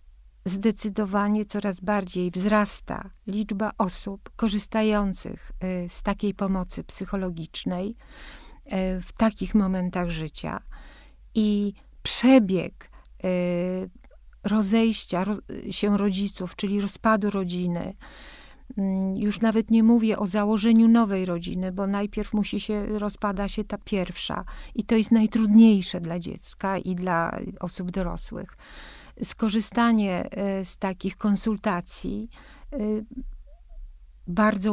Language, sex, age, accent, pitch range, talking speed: Polish, female, 50-69, native, 190-220 Hz, 90 wpm